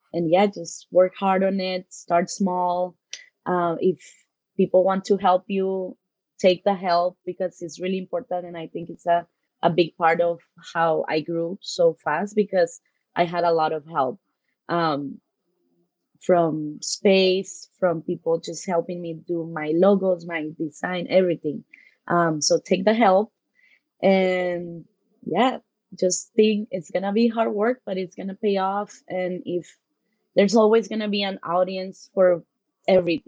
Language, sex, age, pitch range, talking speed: English, female, 20-39, 170-195 Hz, 160 wpm